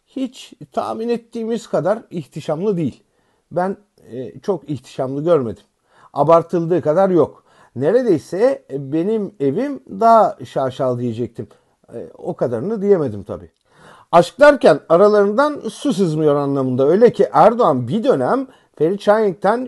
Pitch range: 135-220 Hz